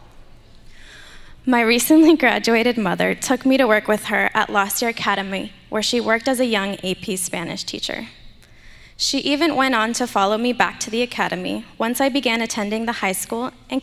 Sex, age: female, 10-29